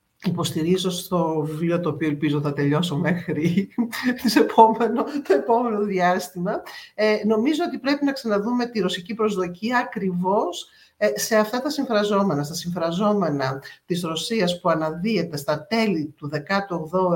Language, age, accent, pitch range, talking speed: Greek, 50-69, native, 155-210 Hz, 135 wpm